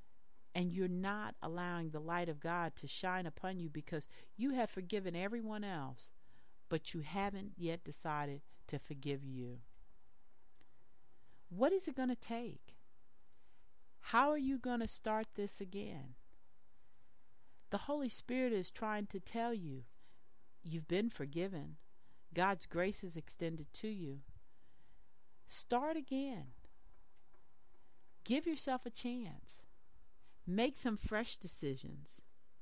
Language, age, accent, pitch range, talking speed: English, 40-59, American, 145-215 Hz, 125 wpm